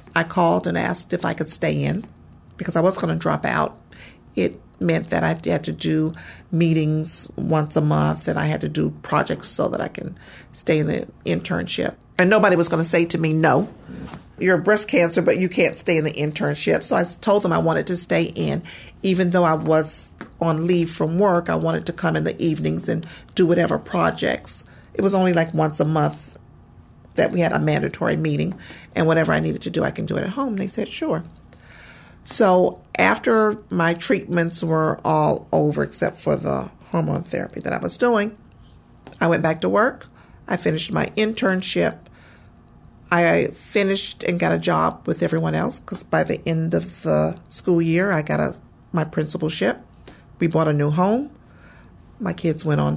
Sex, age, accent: female, 40-59, American